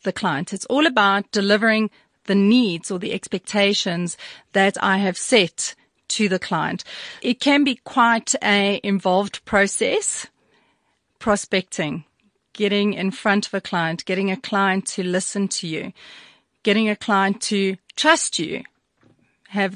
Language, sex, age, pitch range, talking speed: English, female, 40-59, 190-230 Hz, 140 wpm